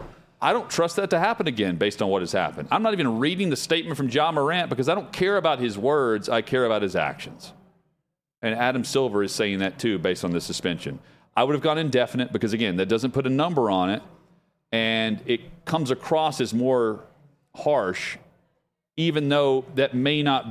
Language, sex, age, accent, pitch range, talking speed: English, male, 40-59, American, 115-160 Hz, 205 wpm